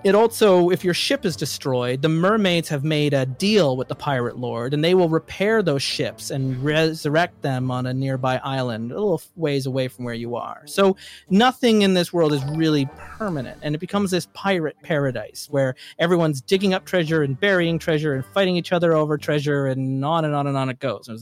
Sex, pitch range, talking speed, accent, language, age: male, 135-165 Hz, 210 wpm, American, English, 30-49